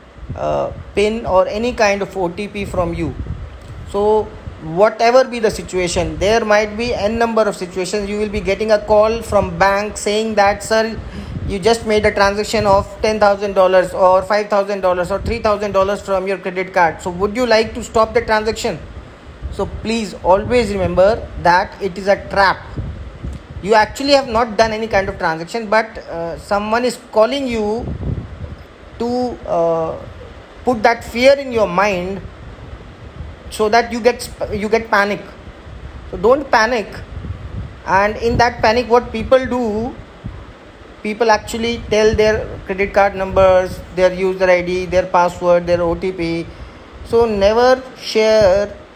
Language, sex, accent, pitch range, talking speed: English, male, Indian, 185-225 Hz, 150 wpm